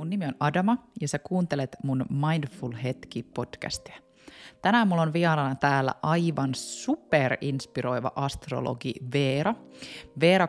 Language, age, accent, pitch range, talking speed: Finnish, 20-39, native, 130-155 Hz, 125 wpm